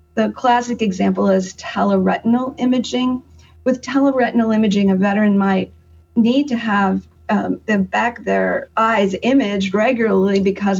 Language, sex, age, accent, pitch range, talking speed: English, female, 50-69, American, 190-225 Hz, 135 wpm